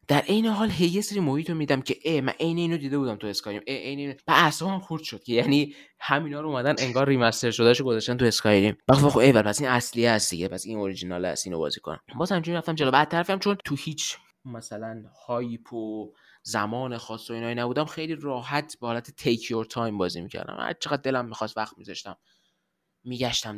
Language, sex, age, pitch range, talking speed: Persian, male, 20-39, 115-145 Hz, 210 wpm